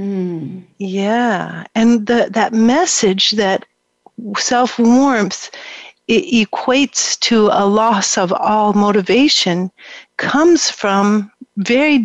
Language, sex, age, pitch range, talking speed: English, female, 50-69, 195-225 Hz, 90 wpm